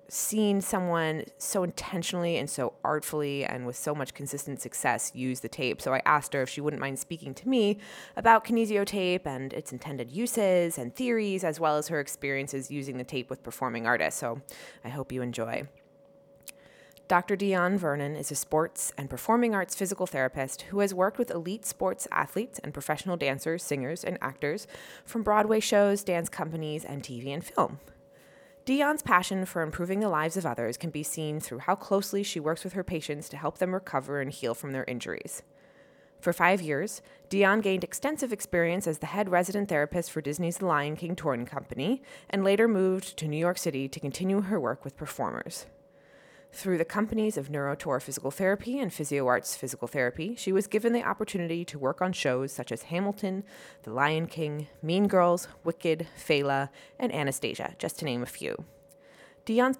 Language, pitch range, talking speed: English, 140-195 Hz, 185 wpm